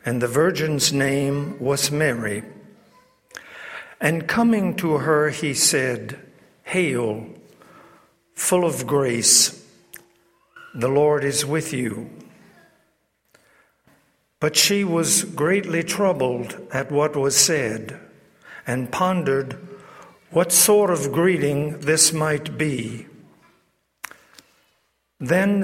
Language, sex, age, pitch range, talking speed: English, male, 60-79, 130-165 Hz, 95 wpm